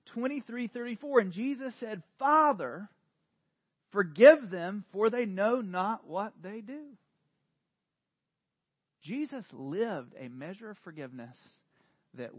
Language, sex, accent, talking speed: English, male, American, 115 wpm